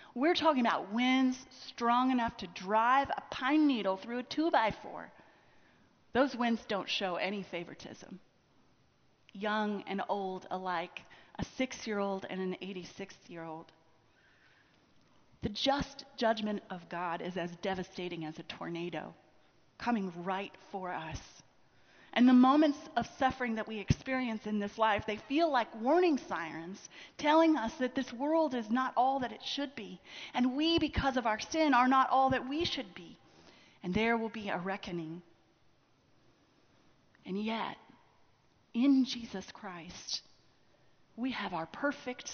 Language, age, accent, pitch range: English, 30-49, American, 190-265 Hz